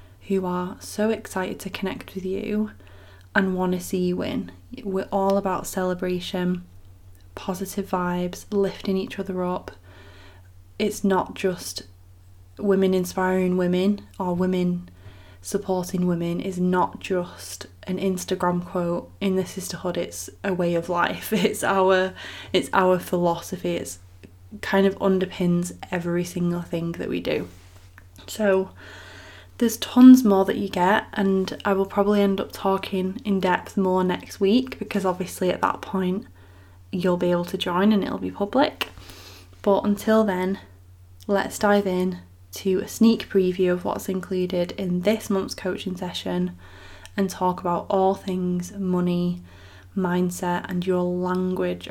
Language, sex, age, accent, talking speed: English, female, 20-39, British, 145 wpm